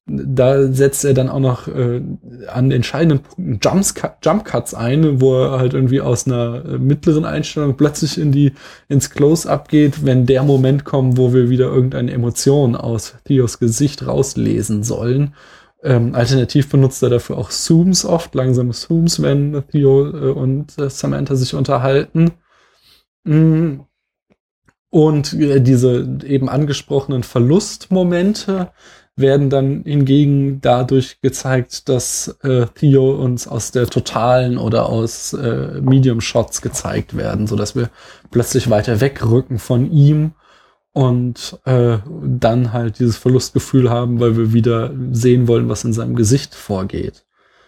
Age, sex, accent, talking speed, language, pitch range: 20-39, male, German, 135 wpm, German, 125-145 Hz